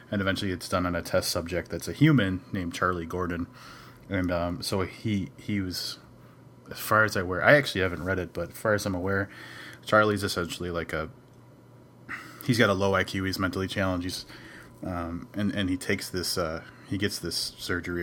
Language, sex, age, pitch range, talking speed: English, male, 30-49, 85-105 Hz, 195 wpm